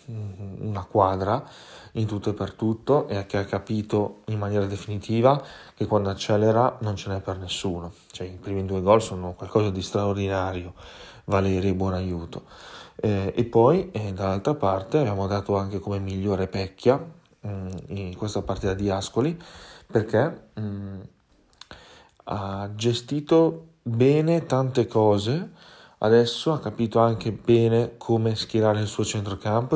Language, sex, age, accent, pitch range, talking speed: Italian, male, 30-49, native, 95-115 Hz, 140 wpm